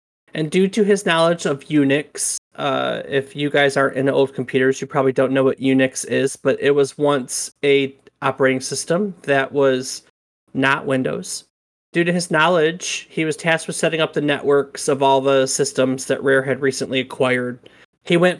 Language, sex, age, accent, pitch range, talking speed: English, male, 30-49, American, 135-165 Hz, 185 wpm